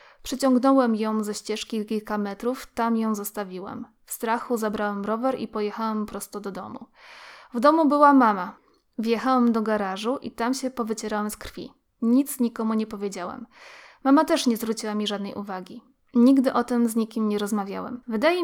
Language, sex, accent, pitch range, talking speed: Polish, female, native, 215-250 Hz, 165 wpm